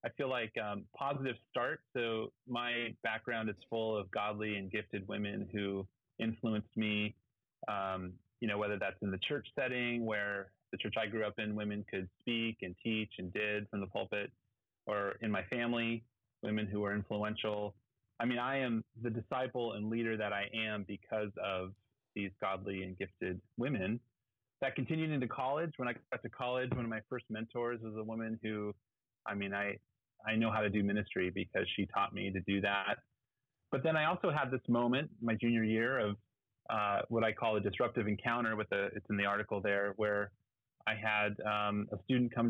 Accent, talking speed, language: American, 195 wpm, English